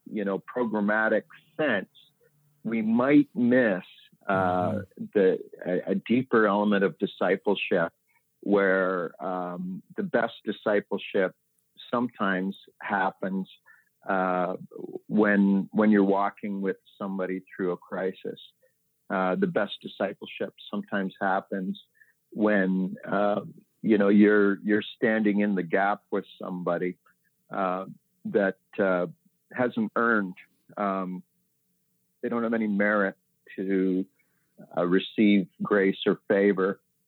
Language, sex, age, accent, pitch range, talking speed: English, male, 50-69, American, 95-110 Hz, 110 wpm